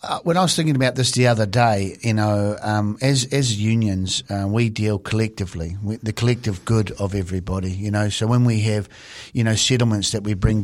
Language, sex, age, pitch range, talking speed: English, male, 50-69, 105-120 Hz, 215 wpm